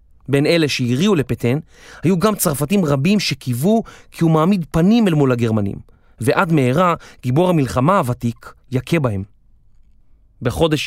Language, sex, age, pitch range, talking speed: Hebrew, male, 30-49, 120-160 Hz, 135 wpm